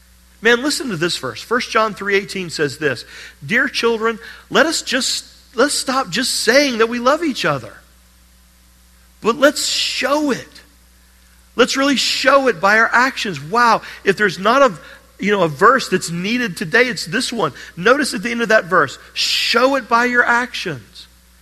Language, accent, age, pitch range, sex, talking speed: English, American, 40-59, 150-235 Hz, male, 175 wpm